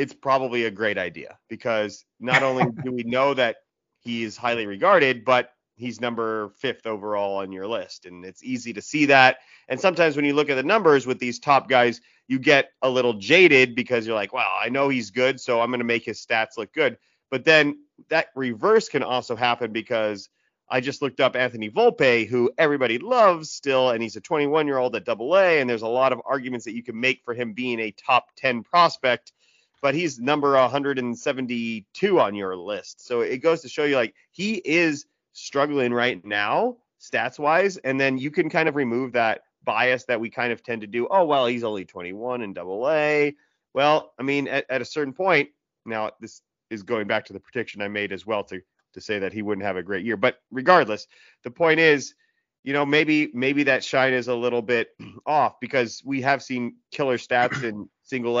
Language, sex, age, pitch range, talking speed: English, male, 30-49, 120-145 Hz, 215 wpm